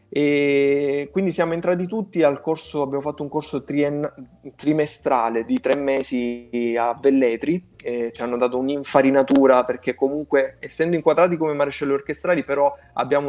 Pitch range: 125-145 Hz